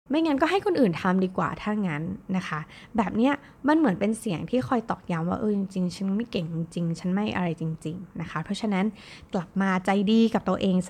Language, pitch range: Thai, 175-225 Hz